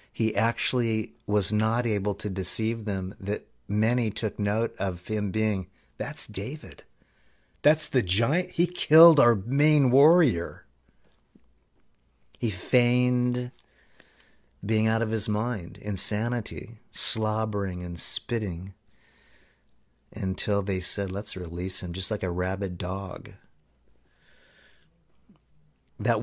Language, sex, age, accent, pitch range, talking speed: English, male, 50-69, American, 100-120 Hz, 110 wpm